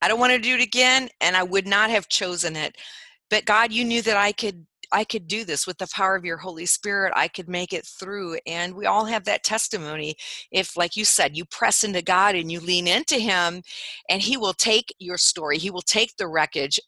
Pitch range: 170-215 Hz